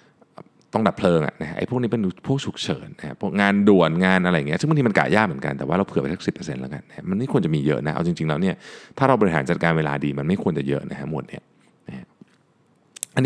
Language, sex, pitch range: Thai, male, 80-100 Hz